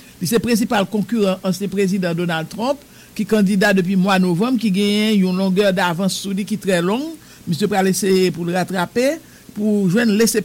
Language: English